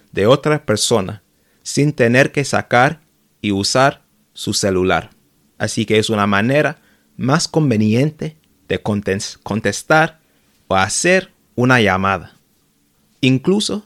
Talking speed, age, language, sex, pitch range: 110 wpm, 30-49, Spanish, male, 100-145 Hz